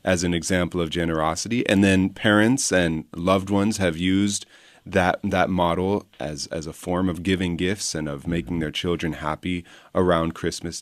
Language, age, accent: English, 30-49, American